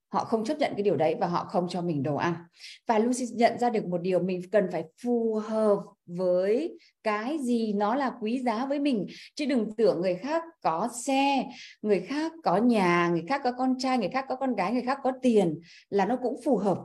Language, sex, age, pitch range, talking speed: Vietnamese, female, 20-39, 170-245 Hz, 230 wpm